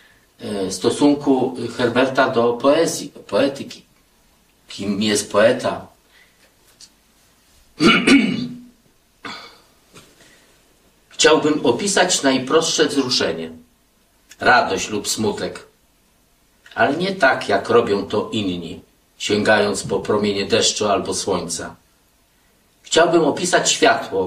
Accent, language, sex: native, Polish, male